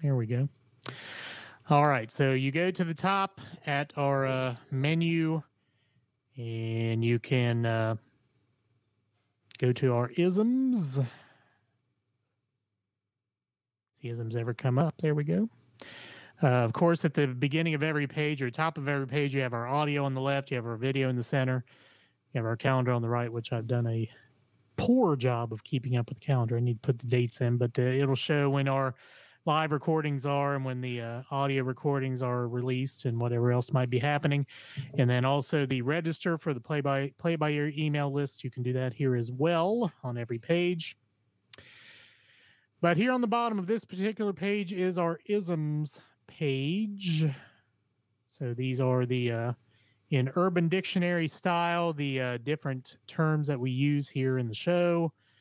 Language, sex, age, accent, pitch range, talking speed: English, male, 30-49, American, 120-150 Hz, 180 wpm